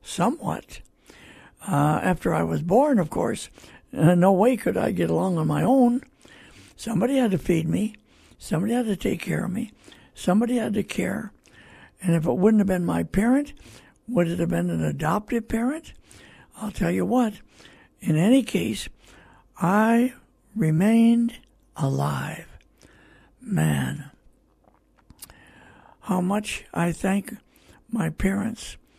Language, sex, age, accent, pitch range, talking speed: English, male, 60-79, American, 160-240 Hz, 135 wpm